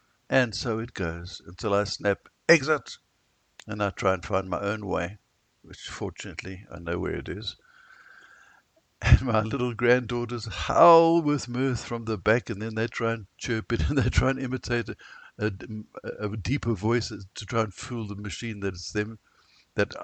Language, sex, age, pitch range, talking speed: English, male, 60-79, 100-125 Hz, 180 wpm